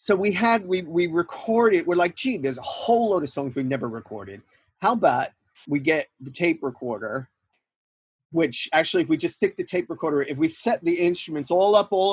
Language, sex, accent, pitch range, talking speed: English, male, American, 125-175 Hz, 210 wpm